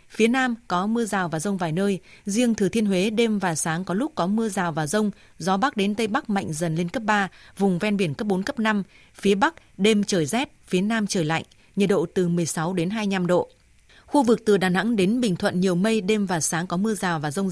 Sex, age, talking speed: female, 20-39, 255 wpm